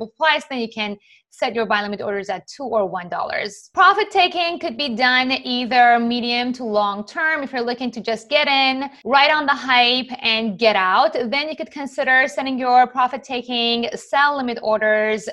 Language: English